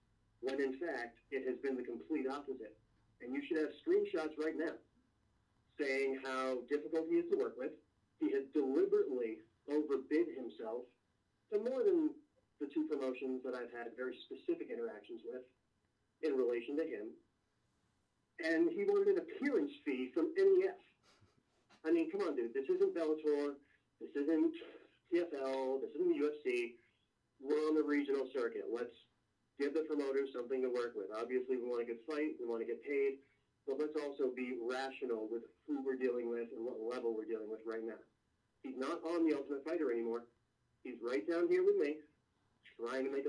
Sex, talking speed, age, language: male, 175 wpm, 40-59, English